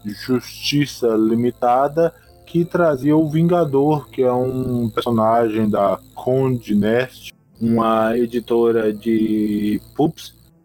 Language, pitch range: Portuguese, 115-140 Hz